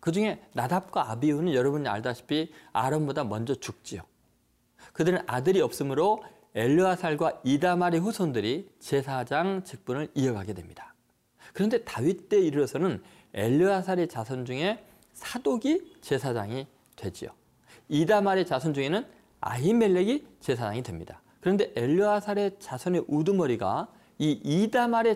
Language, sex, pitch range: Korean, male, 130-195 Hz